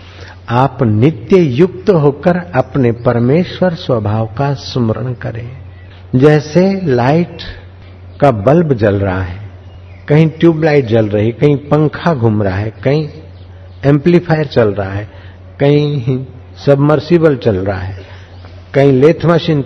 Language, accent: Hindi, native